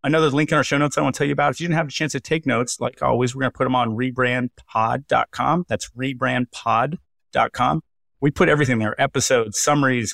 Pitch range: 110-130 Hz